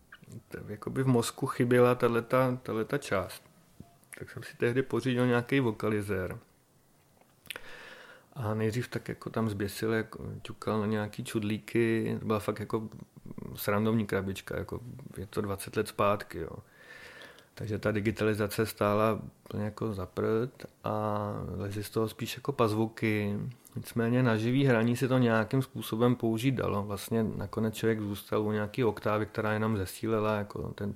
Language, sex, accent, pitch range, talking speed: Czech, male, native, 110-120 Hz, 135 wpm